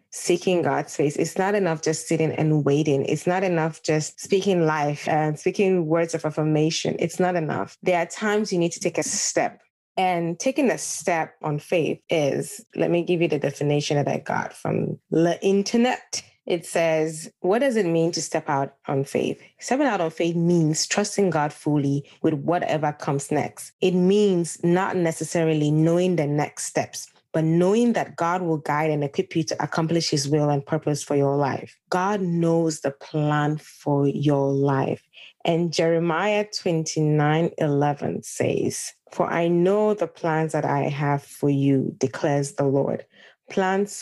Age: 20-39